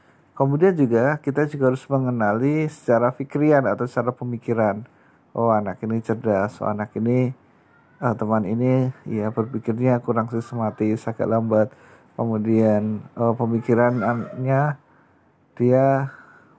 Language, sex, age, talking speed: Indonesian, male, 50-69, 110 wpm